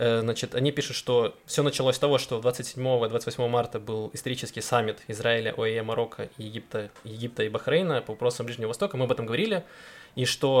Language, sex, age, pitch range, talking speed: Russian, male, 20-39, 115-135 Hz, 175 wpm